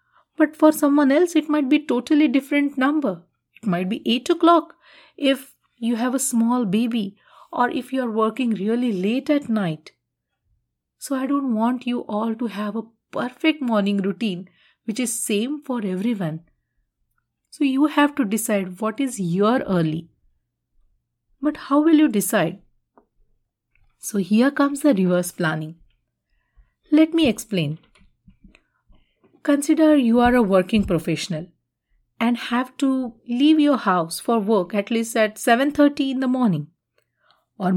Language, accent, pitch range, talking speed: English, Indian, 195-275 Hz, 145 wpm